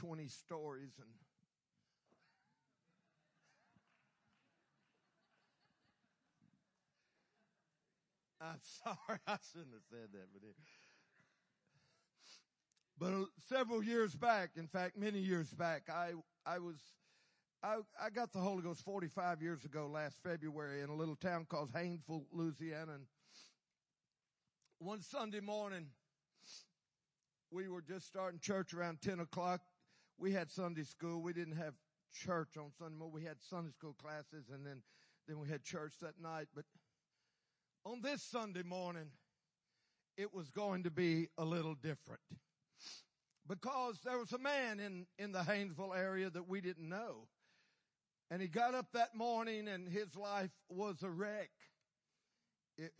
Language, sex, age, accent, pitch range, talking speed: English, male, 50-69, American, 155-195 Hz, 130 wpm